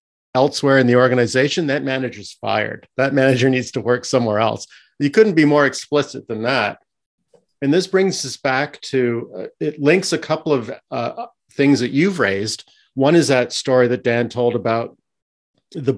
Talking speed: 175 wpm